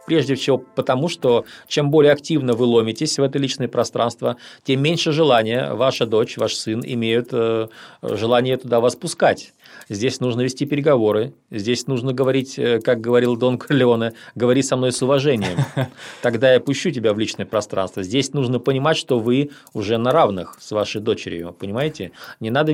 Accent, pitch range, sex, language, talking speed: native, 115-145 Hz, male, Russian, 165 wpm